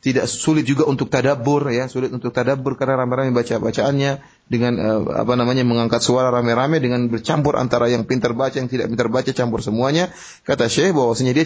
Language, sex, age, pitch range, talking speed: Malay, male, 30-49, 115-155 Hz, 190 wpm